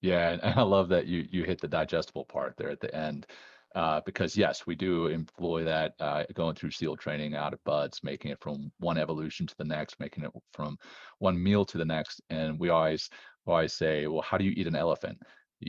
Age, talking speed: 30-49, 230 wpm